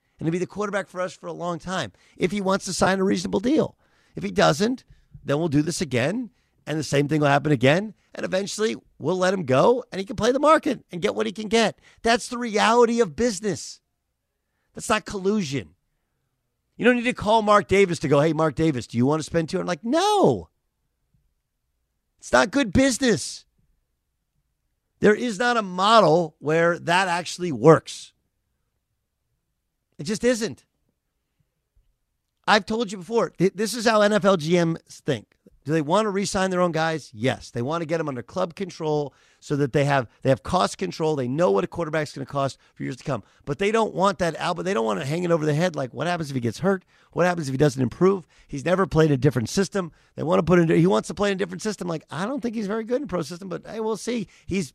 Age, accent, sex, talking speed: 50-69, American, male, 230 wpm